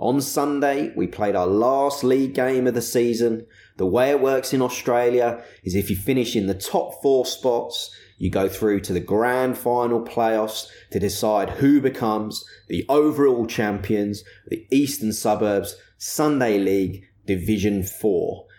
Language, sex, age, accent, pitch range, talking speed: English, male, 20-39, British, 100-125 Hz, 160 wpm